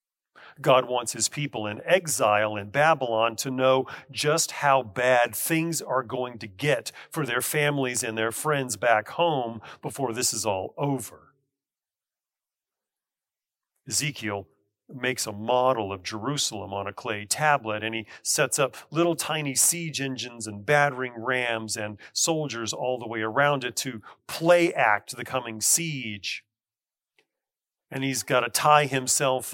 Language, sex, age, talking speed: English, male, 40-59, 145 wpm